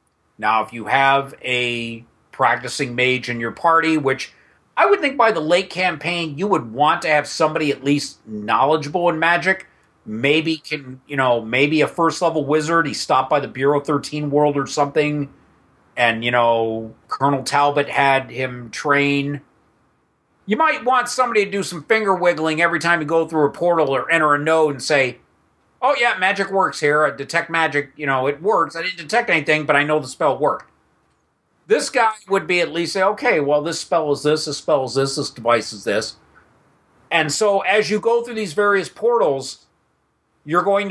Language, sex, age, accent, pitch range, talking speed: English, male, 40-59, American, 135-175 Hz, 190 wpm